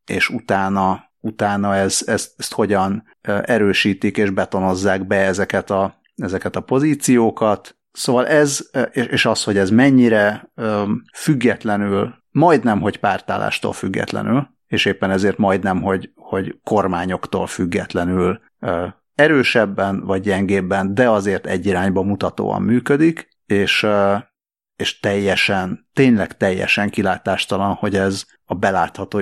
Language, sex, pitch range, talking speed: Hungarian, male, 100-130 Hz, 110 wpm